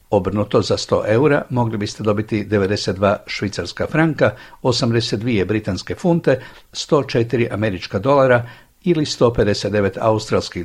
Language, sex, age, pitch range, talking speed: Croatian, male, 60-79, 105-135 Hz, 105 wpm